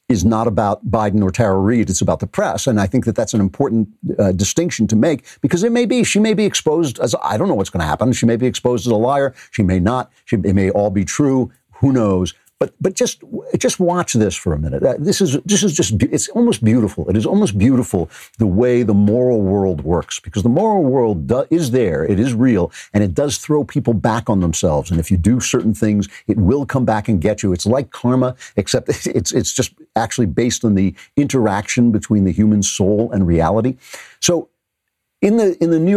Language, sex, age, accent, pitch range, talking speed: English, male, 50-69, American, 95-130 Hz, 225 wpm